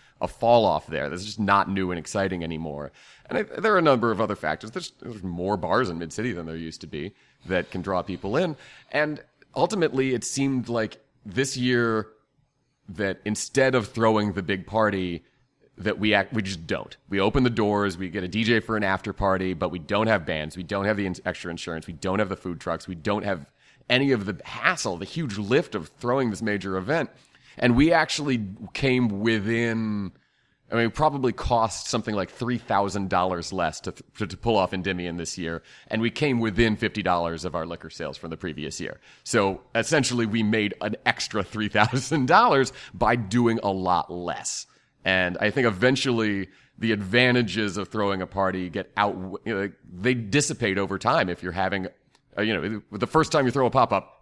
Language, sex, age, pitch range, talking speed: English, male, 30-49, 95-120 Hz, 195 wpm